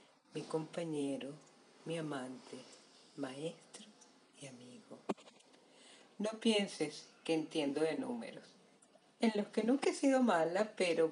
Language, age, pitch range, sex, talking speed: Spanish, 40-59, 160-215 Hz, female, 115 wpm